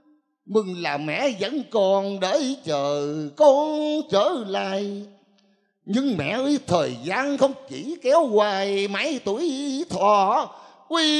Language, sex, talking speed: Vietnamese, male, 125 wpm